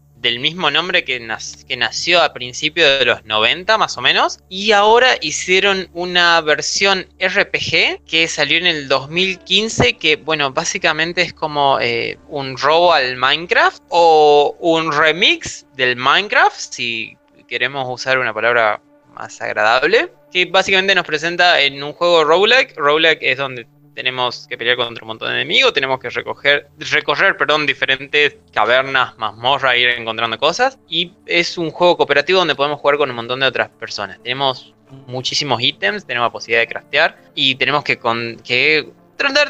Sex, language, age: male, Spanish, 20-39